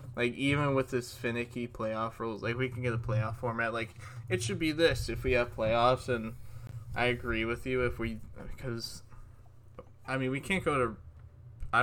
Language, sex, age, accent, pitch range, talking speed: English, male, 10-29, American, 110-120 Hz, 195 wpm